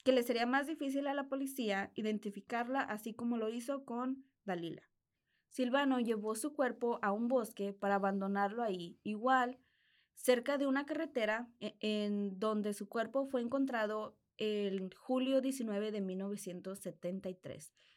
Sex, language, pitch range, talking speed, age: female, Spanish, 205-260 Hz, 135 wpm, 20-39